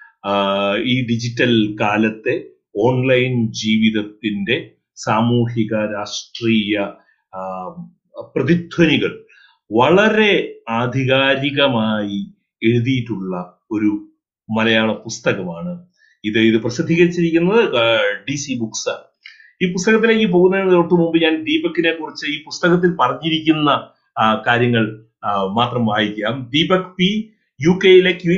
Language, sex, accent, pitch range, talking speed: Malayalam, male, native, 115-180 Hz, 80 wpm